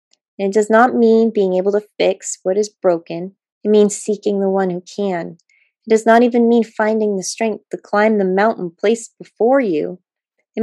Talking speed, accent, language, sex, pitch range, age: 200 wpm, American, English, female, 180-225 Hz, 20-39